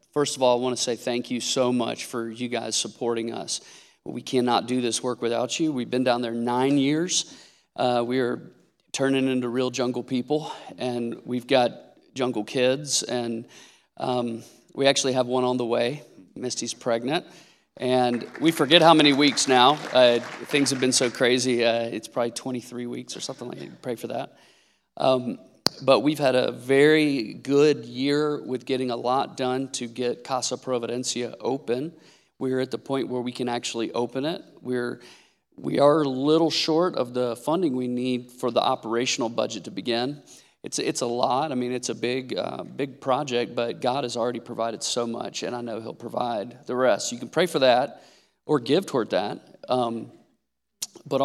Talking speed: 185 wpm